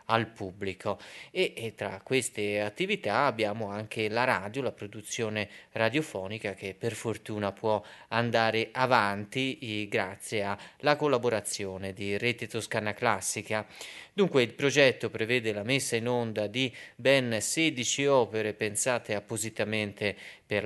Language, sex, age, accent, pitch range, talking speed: Italian, male, 30-49, native, 105-130 Hz, 120 wpm